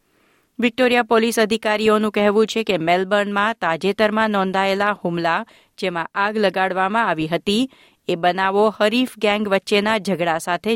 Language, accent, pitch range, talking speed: Gujarati, native, 175-225 Hz, 125 wpm